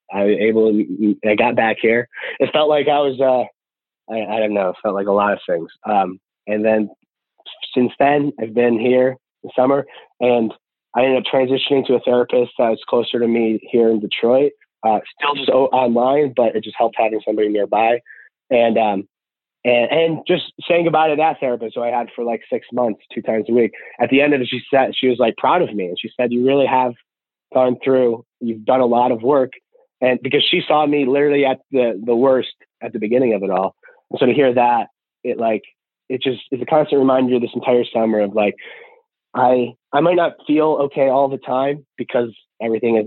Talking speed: 215 wpm